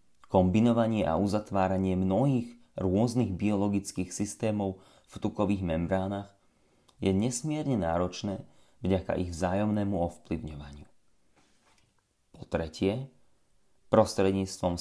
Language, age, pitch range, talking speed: Slovak, 30-49, 90-110 Hz, 80 wpm